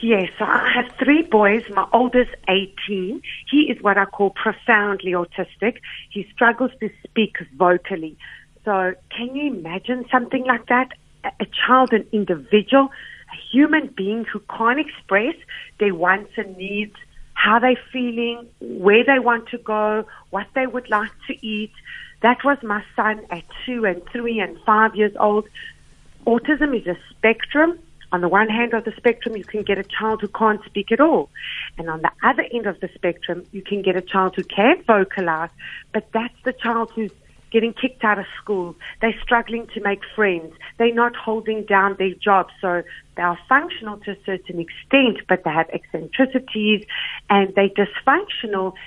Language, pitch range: English, 195-240 Hz